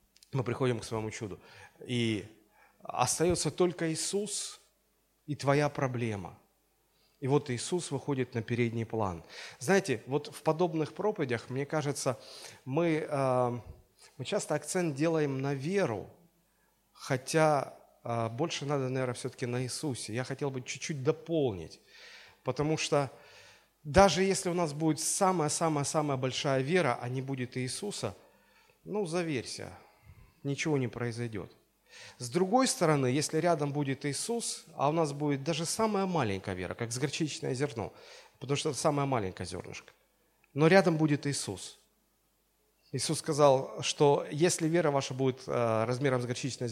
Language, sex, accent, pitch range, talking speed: Russian, male, native, 125-165 Hz, 130 wpm